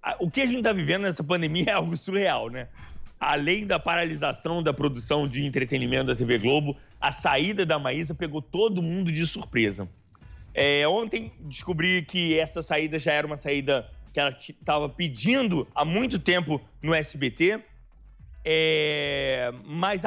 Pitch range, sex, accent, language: 145-185 Hz, male, Brazilian, English